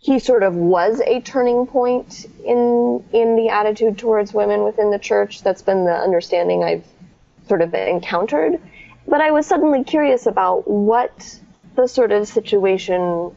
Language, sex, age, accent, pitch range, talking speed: English, female, 30-49, American, 175-235 Hz, 155 wpm